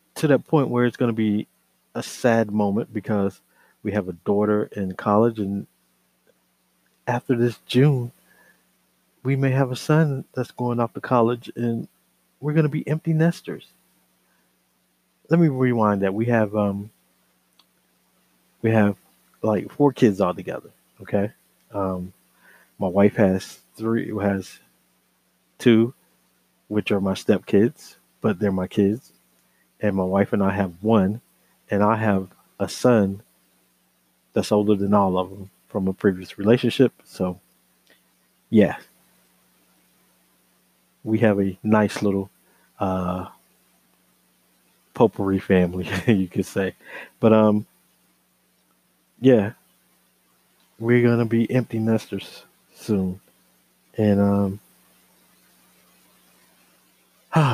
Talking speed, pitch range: 125 wpm, 90-115 Hz